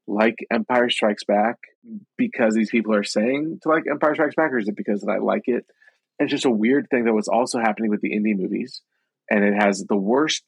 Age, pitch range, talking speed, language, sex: 30-49, 100-125 Hz, 230 wpm, English, male